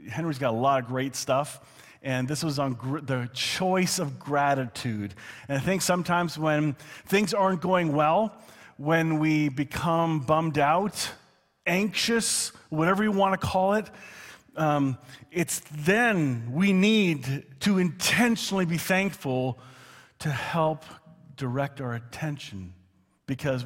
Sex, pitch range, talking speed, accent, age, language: male, 130-185 Hz, 130 wpm, American, 40-59, English